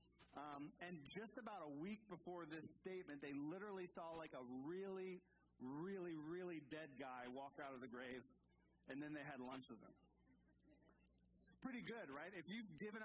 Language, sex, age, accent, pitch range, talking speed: English, male, 40-59, American, 130-185 Hz, 170 wpm